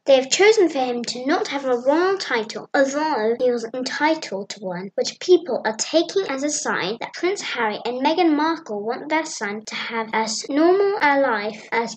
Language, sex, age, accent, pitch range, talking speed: English, female, 10-29, British, 220-315 Hz, 200 wpm